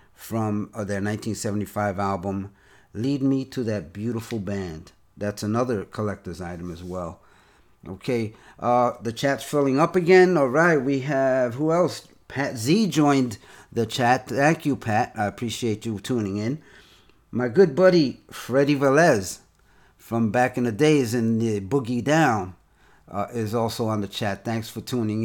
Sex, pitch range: male, 105-140 Hz